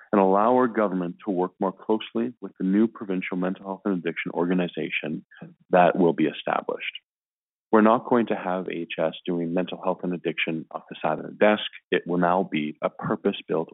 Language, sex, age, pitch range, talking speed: English, male, 30-49, 85-100 Hz, 190 wpm